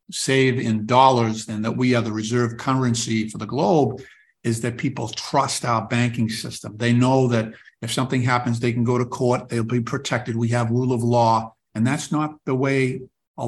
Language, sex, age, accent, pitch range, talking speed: English, male, 60-79, American, 110-130 Hz, 200 wpm